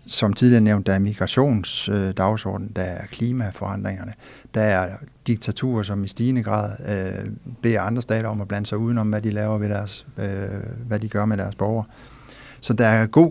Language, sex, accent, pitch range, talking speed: Danish, male, native, 100-125 Hz, 185 wpm